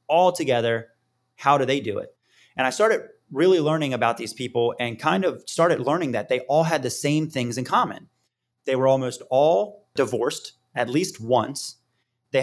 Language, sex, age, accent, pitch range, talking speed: English, male, 20-39, American, 120-145 Hz, 185 wpm